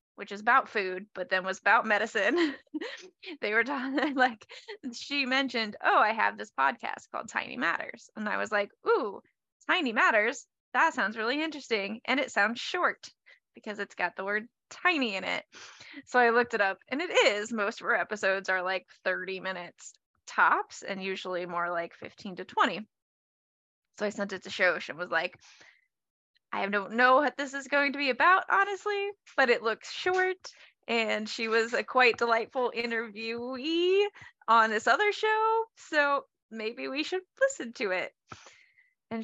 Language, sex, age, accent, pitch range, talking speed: English, female, 20-39, American, 205-295 Hz, 175 wpm